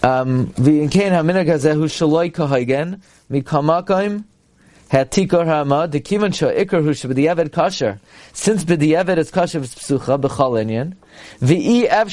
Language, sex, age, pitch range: English, male, 30-49, 135-175 Hz